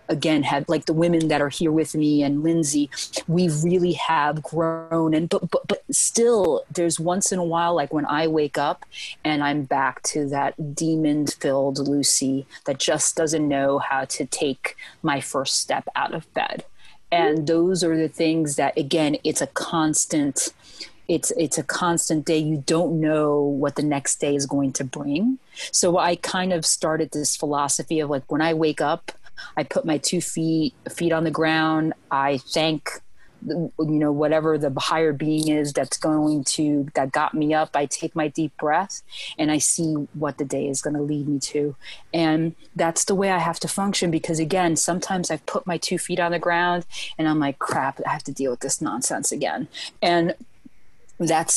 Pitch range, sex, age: 145-170 Hz, female, 30-49